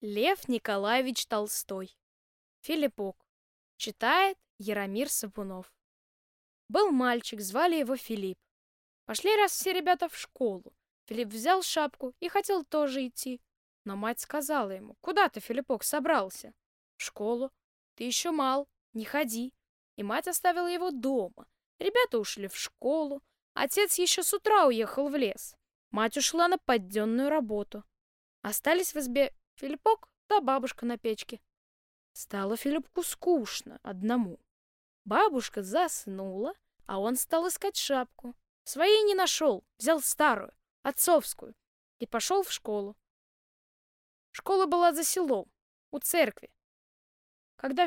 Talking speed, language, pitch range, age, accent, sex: 120 wpm, Russian, 220-340 Hz, 10-29, native, female